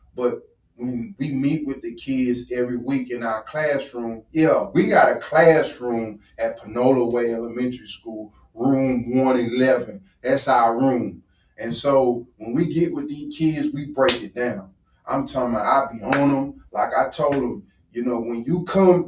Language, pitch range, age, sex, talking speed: English, 120-165 Hz, 30-49, male, 175 wpm